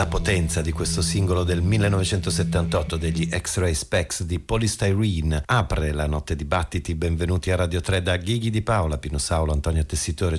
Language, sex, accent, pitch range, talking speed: Italian, male, native, 85-100 Hz, 170 wpm